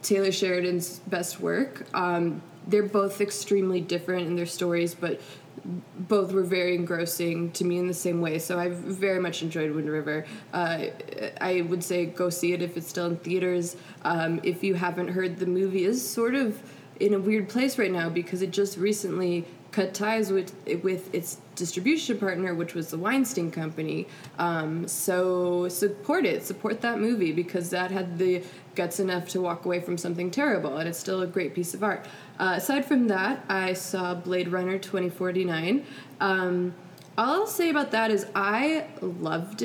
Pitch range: 175-210 Hz